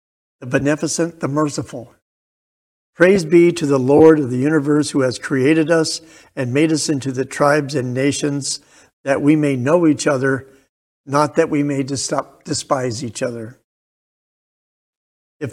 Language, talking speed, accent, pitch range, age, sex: English, 145 wpm, American, 130-155 Hz, 60-79, male